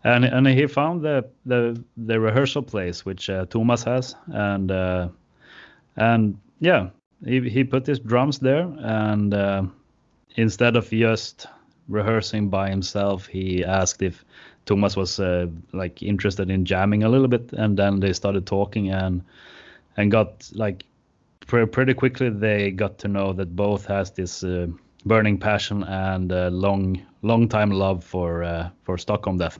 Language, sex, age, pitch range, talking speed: English, male, 30-49, 95-115 Hz, 160 wpm